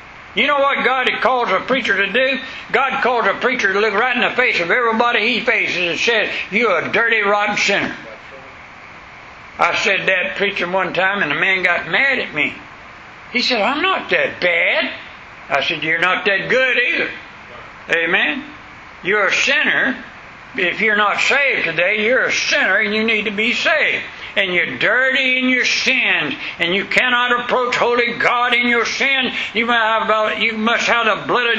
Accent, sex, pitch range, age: American, male, 200-250 Hz, 60-79